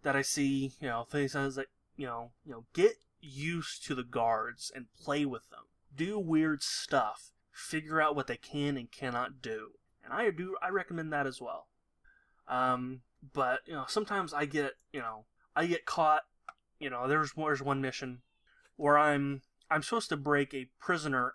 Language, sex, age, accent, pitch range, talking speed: English, male, 20-39, American, 130-155 Hz, 185 wpm